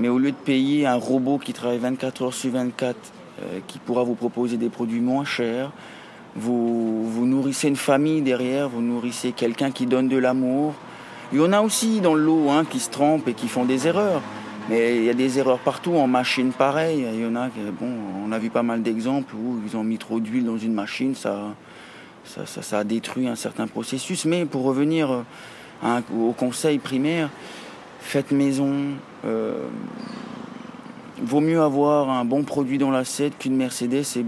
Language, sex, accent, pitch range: French, male, French, 120-145 Hz